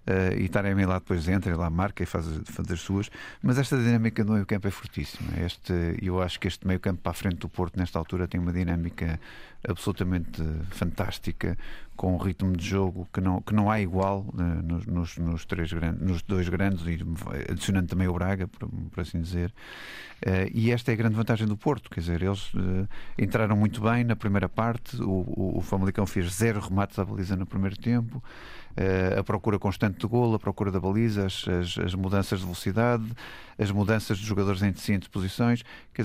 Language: Portuguese